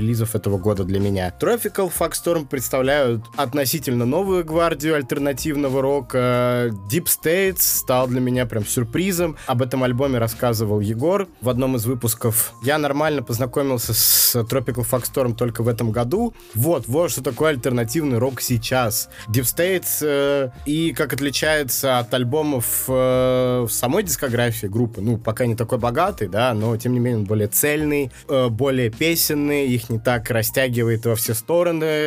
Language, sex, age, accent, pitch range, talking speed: Russian, male, 20-39, native, 120-145 Hz, 155 wpm